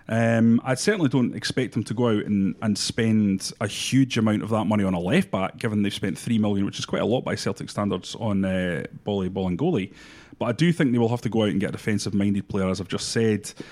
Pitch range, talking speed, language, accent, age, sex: 100-130 Hz, 255 wpm, English, British, 30-49, male